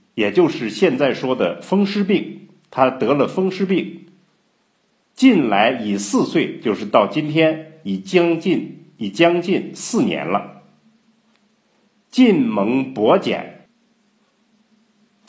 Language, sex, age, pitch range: Chinese, male, 50-69, 155-225 Hz